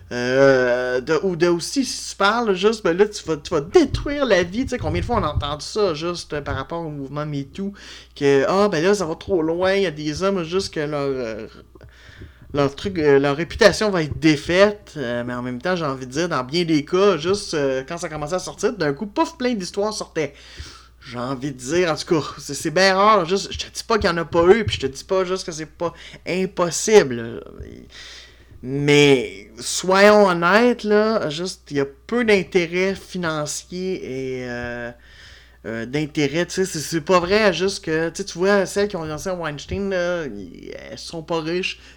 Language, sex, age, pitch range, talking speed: French, male, 30-49, 140-190 Hz, 215 wpm